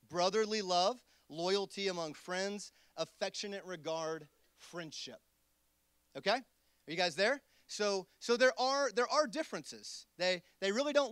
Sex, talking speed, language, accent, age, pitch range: male, 130 wpm, English, American, 30-49, 160-210 Hz